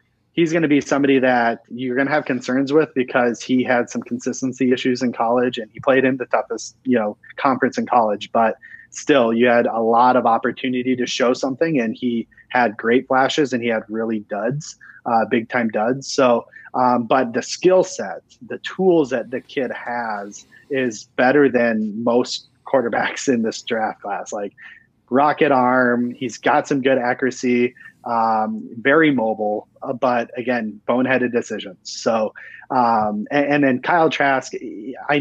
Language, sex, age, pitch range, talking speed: English, male, 30-49, 115-135 Hz, 170 wpm